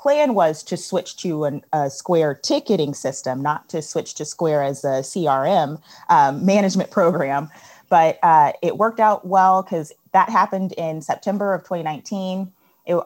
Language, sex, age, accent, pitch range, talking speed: English, female, 30-49, American, 155-200 Hz, 155 wpm